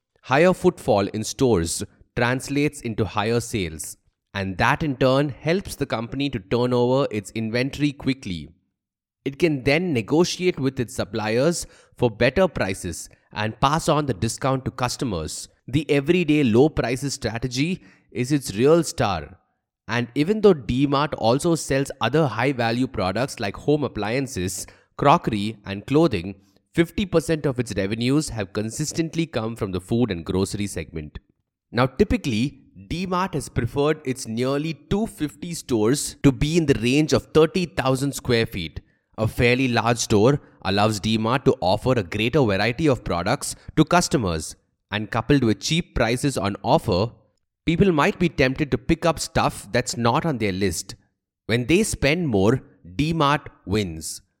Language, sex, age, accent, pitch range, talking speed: English, male, 20-39, Indian, 105-145 Hz, 145 wpm